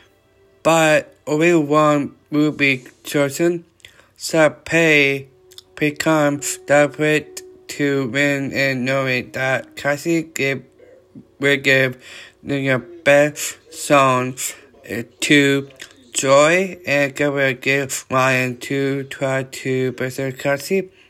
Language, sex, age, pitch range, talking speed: English, male, 20-39, 130-145 Hz, 95 wpm